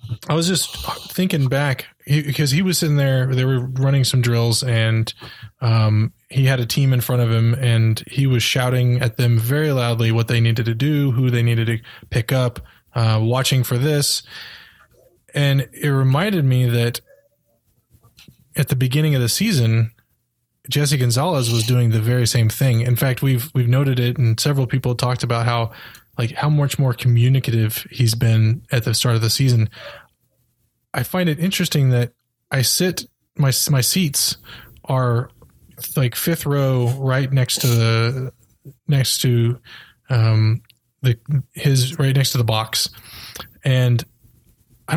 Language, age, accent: English, 20-39, American